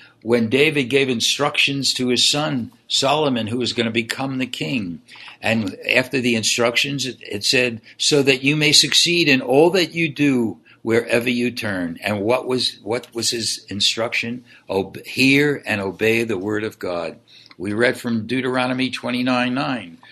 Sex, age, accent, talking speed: male, 60-79, American, 170 wpm